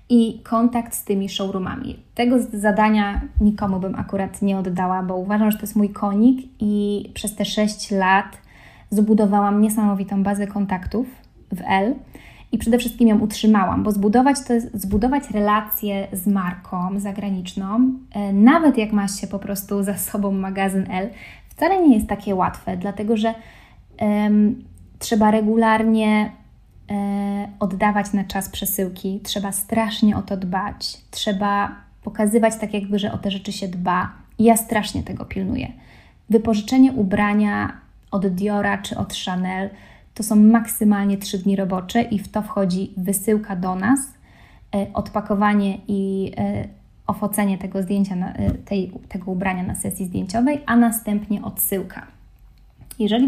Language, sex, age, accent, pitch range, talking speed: Polish, female, 20-39, native, 195-220 Hz, 135 wpm